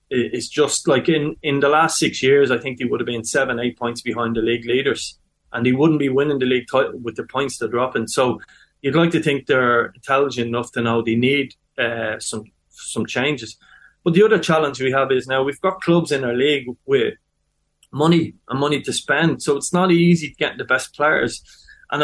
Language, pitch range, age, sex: English, 120-150 Hz, 30-49, male